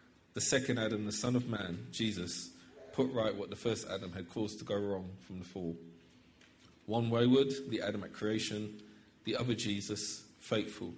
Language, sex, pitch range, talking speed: English, male, 90-120 Hz, 175 wpm